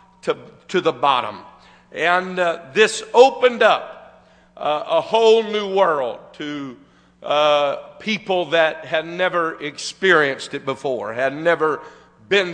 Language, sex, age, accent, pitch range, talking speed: English, male, 50-69, American, 155-195 Hz, 125 wpm